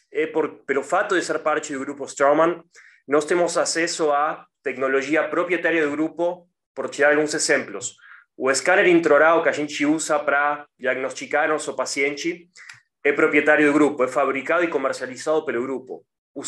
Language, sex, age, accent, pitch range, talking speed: Portuguese, male, 20-39, Argentinian, 140-170 Hz, 160 wpm